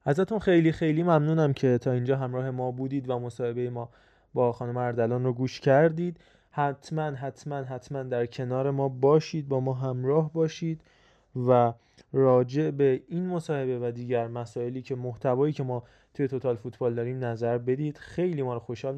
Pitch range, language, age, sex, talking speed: 120-145 Hz, Persian, 20-39, male, 170 wpm